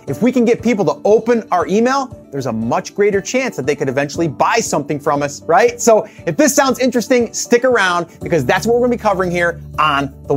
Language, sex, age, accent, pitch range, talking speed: English, male, 30-49, American, 170-235 Hz, 230 wpm